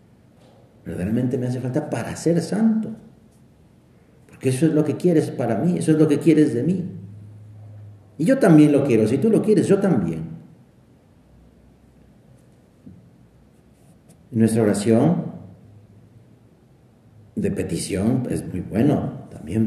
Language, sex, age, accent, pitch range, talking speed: Spanish, male, 50-69, Mexican, 115-155 Hz, 125 wpm